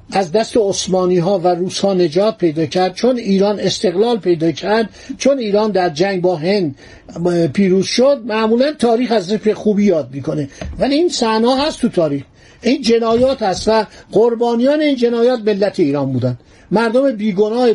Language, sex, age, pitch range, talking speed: Persian, male, 50-69, 180-235 Hz, 160 wpm